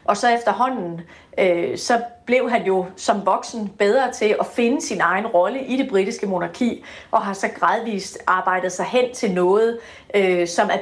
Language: Danish